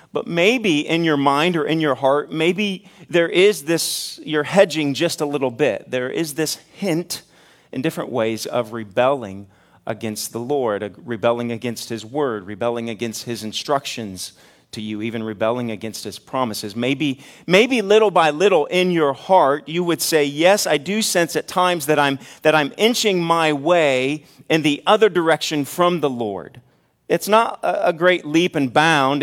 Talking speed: 175 wpm